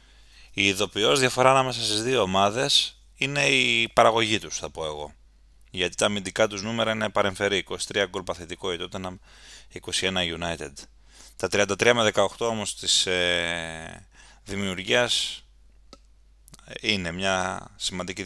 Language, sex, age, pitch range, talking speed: Greek, male, 30-49, 80-110 Hz, 120 wpm